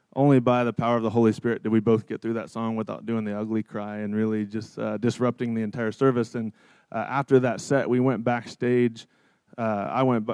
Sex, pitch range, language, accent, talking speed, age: male, 110-125 Hz, English, American, 225 wpm, 20-39